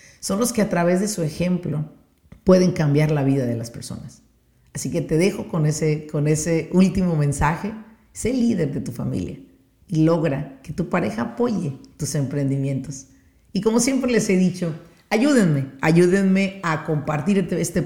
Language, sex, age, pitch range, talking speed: Spanish, female, 40-59, 155-195 Hz, 165 wpm